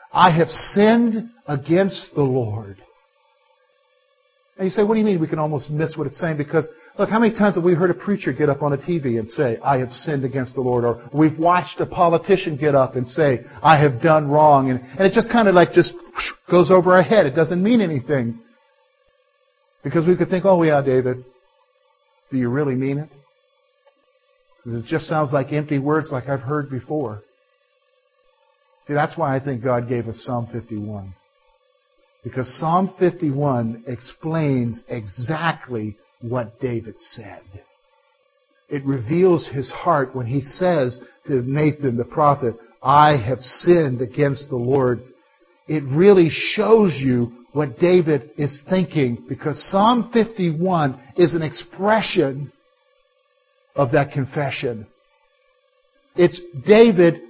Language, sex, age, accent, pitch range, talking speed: English, male, 50-69, American, 135-200 Hz, 155 wpm